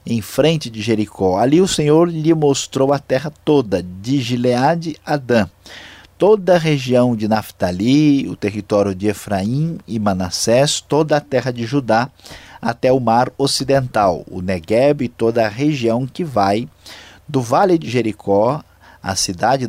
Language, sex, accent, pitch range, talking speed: Portuguese, male, Brazilian, 105-145 Hz, 150 wpm